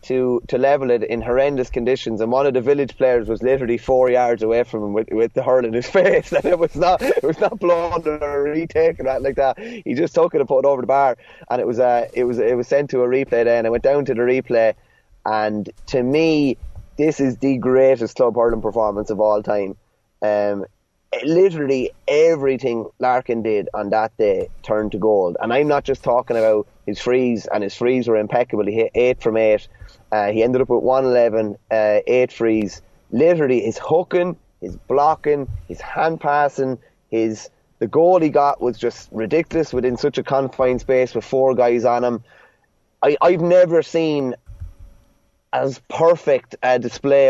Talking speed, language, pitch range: 200 wpm, English, 115-145 Hz